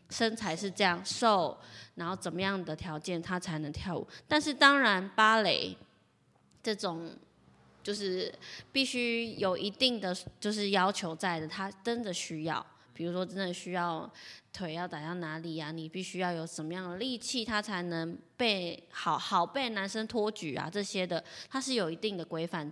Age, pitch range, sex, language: 20-39, 170-215 Hz, female, Chinese